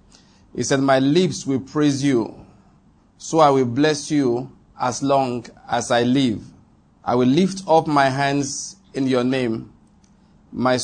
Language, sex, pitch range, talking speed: English, male, 125-145 Hz, 150 wpm